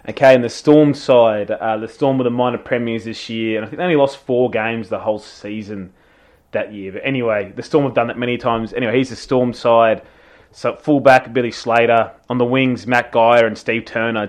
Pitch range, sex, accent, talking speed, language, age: 115-135 Hz, male, Australian, 225 wpm, English, 20-39